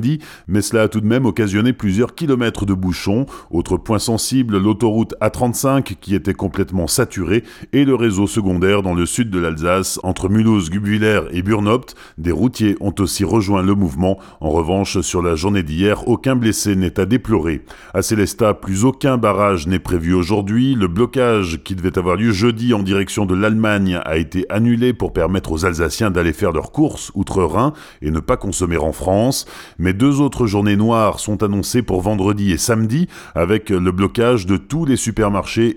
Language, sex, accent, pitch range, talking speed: French, male, French, 95-115 Hz, 180 wpm